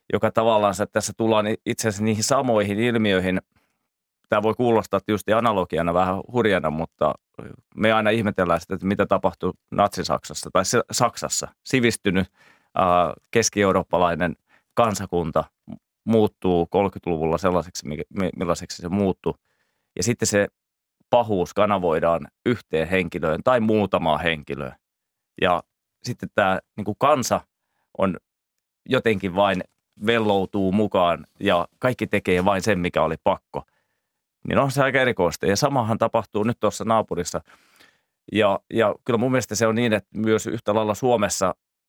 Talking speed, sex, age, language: 130 wpm, male, 30-49, Finnish